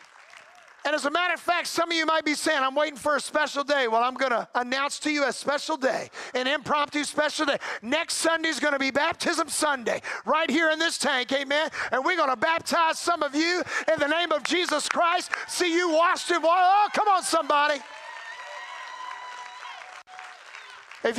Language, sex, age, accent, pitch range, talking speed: English, male, 50-69, American, 255-320 Hz, 200 wpm